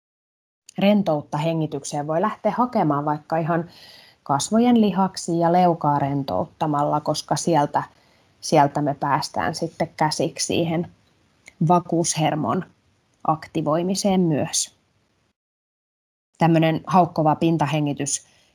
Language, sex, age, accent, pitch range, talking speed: Finnish, female, 20-39, native, 150-175 Hz, 85 wpm